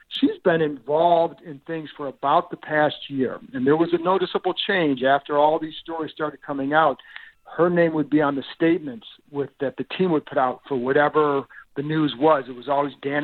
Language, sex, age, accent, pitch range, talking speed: English, male, 50-69, American, 135-160 Hz, 210 wpm